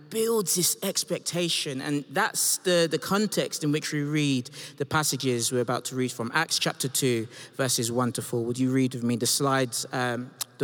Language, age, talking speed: English, 20-39, 190 wpm